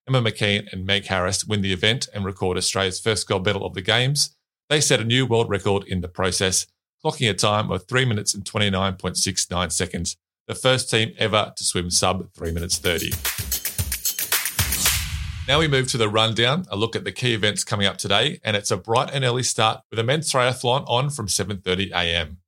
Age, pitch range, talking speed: 30-49, 95-125 Hz, 200 wpm